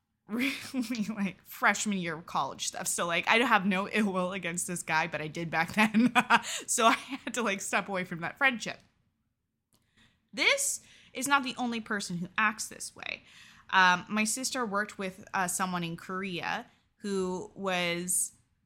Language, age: English, 20-39